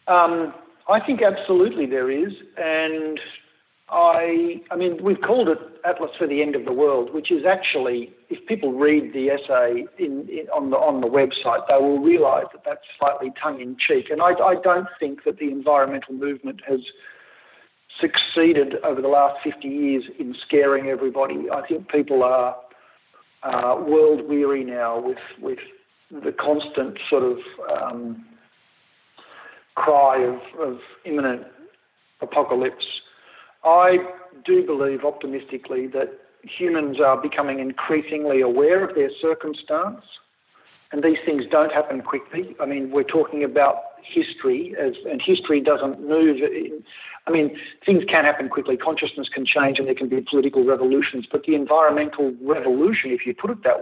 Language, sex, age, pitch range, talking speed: English, male, 50-69, 135-185 Hz, 155 wpm